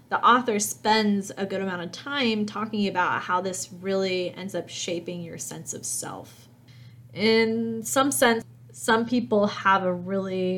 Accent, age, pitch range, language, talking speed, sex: American, 20-39, 180-225 Hz, English, 160 wpm, female